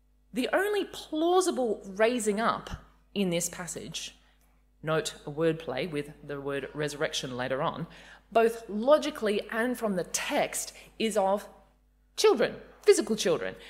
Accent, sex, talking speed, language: Australian, female, 125 wpm, English